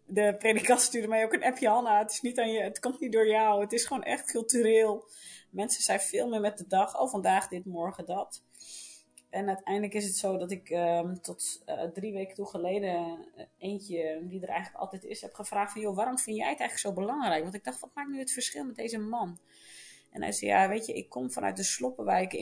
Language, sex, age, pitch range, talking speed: Dutch, female, 30-49, 185-220 Hz, 220 wpm